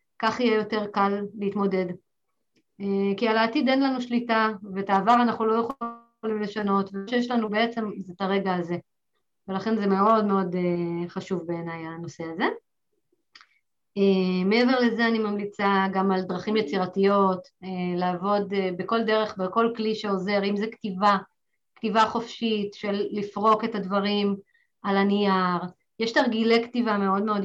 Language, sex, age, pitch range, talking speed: Hebrew, female, 30-49, 195-230 Hz, 140 wpm